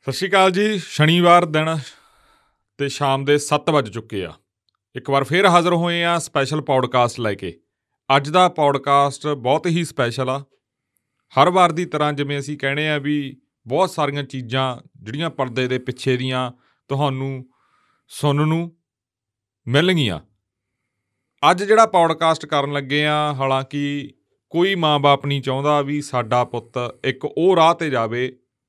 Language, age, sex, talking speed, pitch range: Punjabi, 40-59, male, 120 wpm, 125-155 Hz